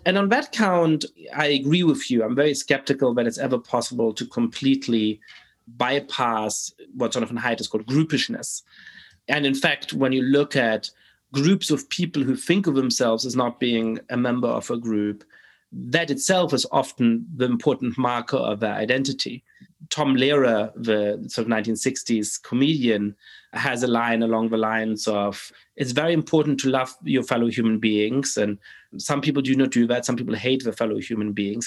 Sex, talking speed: male, 180 wpm